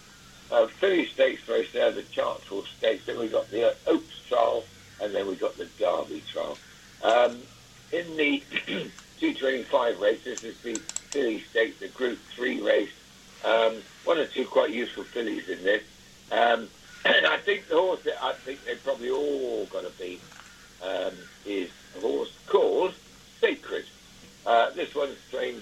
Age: 60-79